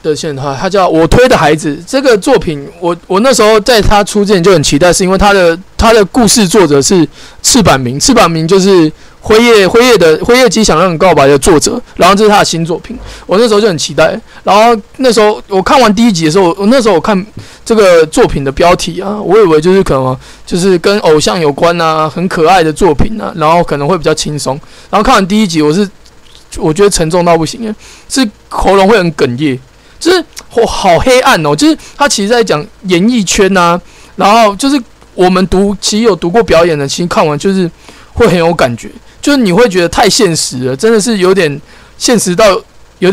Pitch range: 160-220 Hz